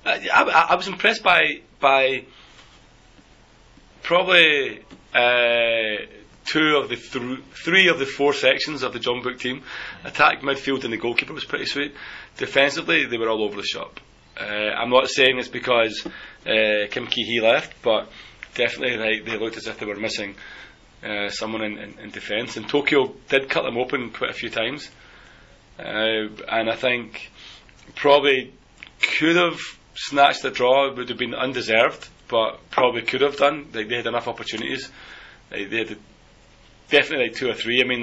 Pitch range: 115-145 Hz